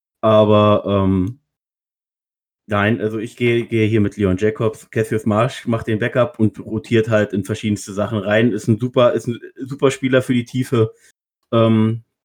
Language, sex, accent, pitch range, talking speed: German, male, German, 110-125 Hz, 165 wpm